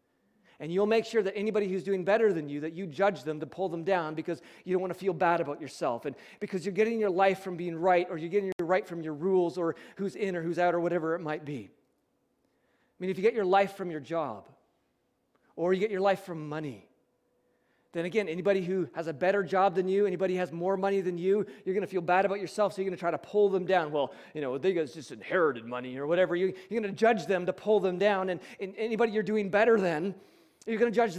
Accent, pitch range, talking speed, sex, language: American, 170-210 Hz, 260 wpm, male, English